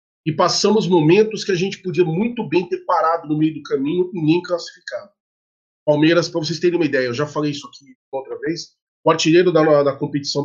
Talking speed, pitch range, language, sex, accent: 205 wpm, 150-195 Hz, Portuguese, male, Brazilian